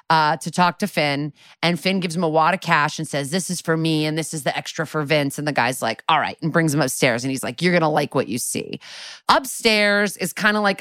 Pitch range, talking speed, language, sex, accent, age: 150-185 Hz, 280 wpm, English, female, American, 30-49